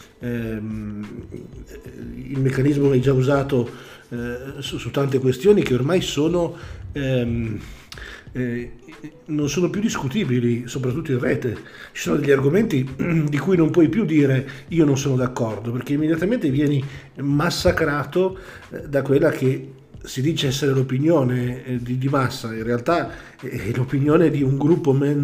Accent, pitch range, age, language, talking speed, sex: native, 120-150 Hz, 50-69, Italian, 145 wpm, male